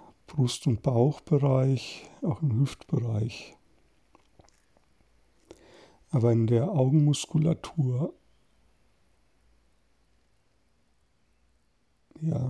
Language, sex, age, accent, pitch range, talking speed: German, male, 60-79, German, 110-150 Hz, 55 wpm